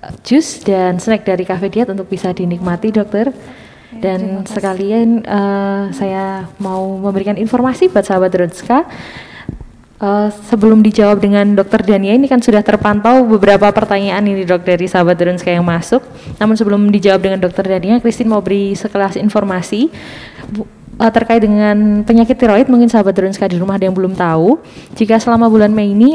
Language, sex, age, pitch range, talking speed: Indonesian, female, 20-39, 195-235 Hz, 160 wpm